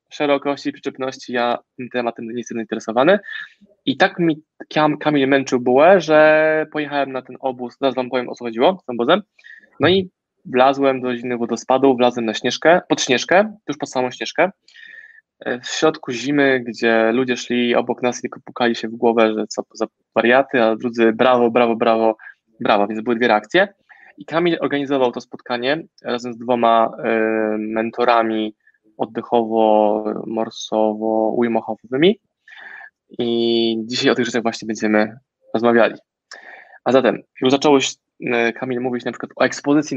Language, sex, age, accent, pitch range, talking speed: Polish, male, 20-39, native, 115-145 Hz, 150 wpm